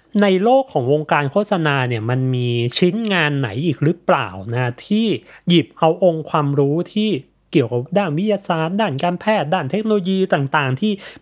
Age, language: 20-39, Thai